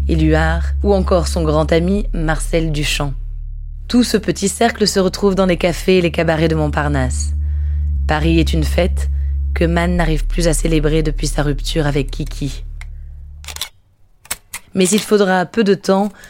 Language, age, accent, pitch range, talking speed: French, 20-39, French, 140-185 Hz, 160 wpm